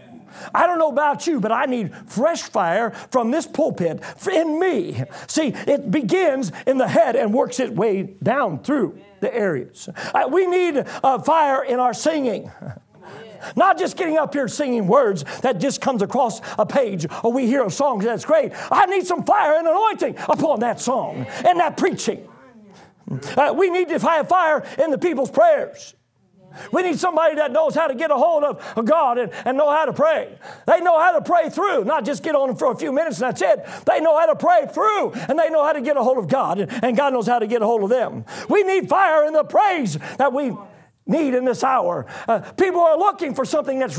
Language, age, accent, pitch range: English, 50-69, American, 255-330 Hz